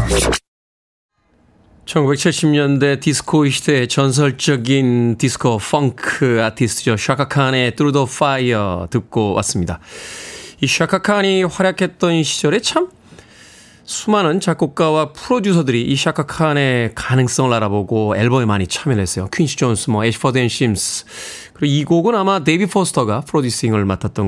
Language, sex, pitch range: Korean, male, 115-165 Hz